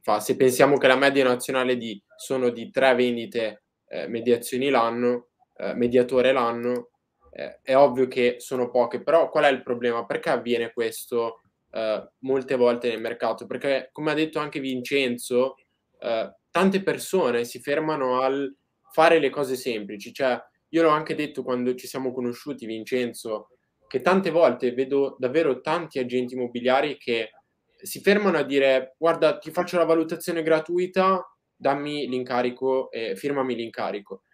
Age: 10-29